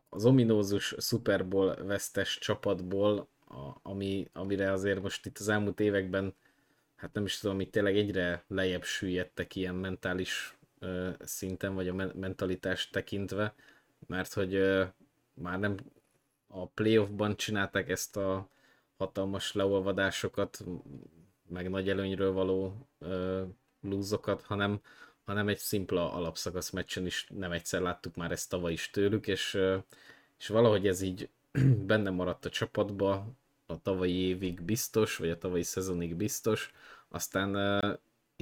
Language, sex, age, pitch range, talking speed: Hungarian, male, 20-39, 95-100 Hz, 130 wpm